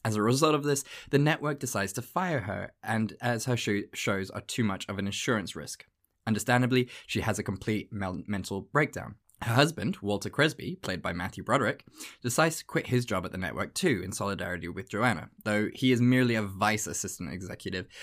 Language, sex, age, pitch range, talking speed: English, male, 20-39, 100-130 Hz, 195 wpm